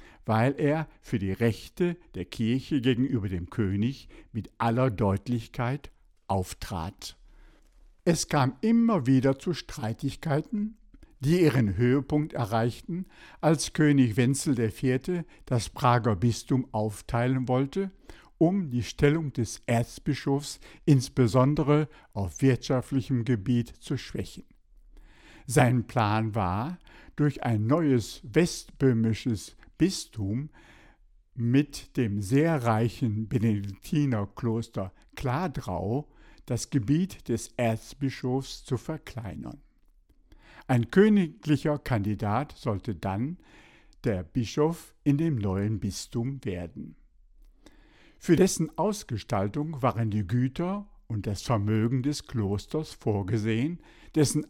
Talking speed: 100 wpm